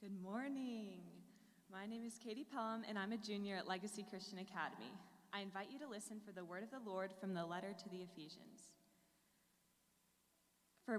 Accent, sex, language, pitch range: American, female, English, 180-215 Hz